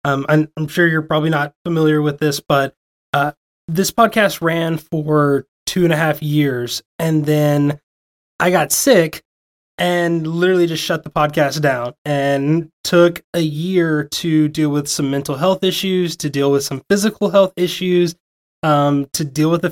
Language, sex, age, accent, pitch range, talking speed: English, male, 20-39, American, 145-175 Hz, 170 wpm